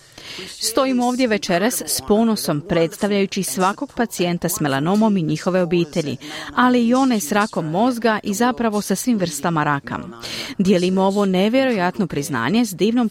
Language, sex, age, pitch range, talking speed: Croatian, female, 40-59, 170-225 Hz, 140 wpm